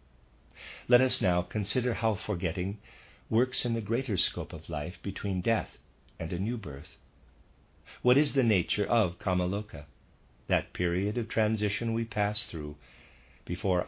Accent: American